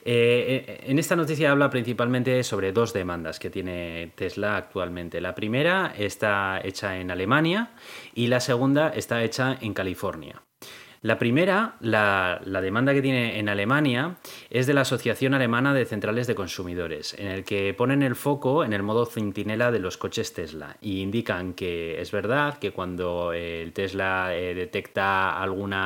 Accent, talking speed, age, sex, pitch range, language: Spanish, 160 wpm, 30-49, male, 90-120 Hz, Spanish